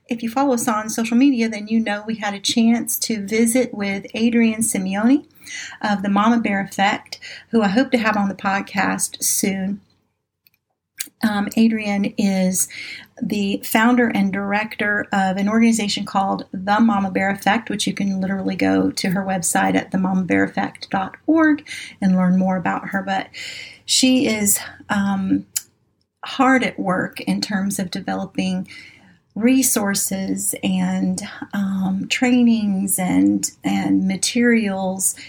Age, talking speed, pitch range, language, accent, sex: 40-59, 140 wpm, 190-235 Hz, English, American, female